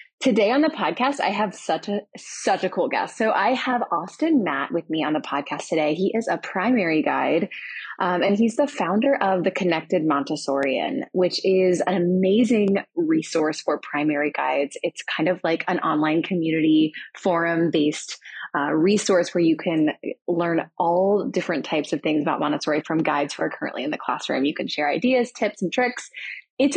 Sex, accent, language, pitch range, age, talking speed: female, American, English, 165-225 Hz, 20-39, 185 wpm